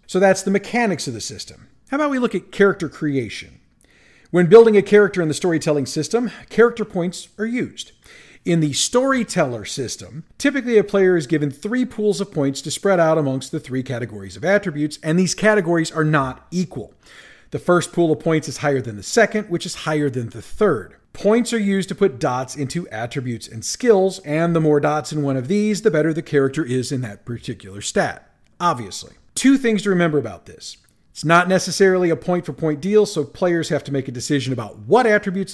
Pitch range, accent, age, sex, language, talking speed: 140-195 Hz, American, 40-59, male, English, 205 wpm